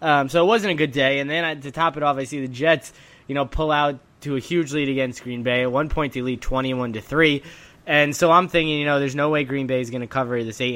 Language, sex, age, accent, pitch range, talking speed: English, male, 10-29, American, 130-150 Hz, 290 wpm